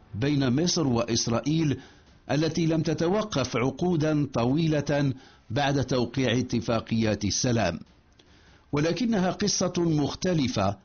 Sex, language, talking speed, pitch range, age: male, English, 85 wpm, 120-160 Hz, 60-79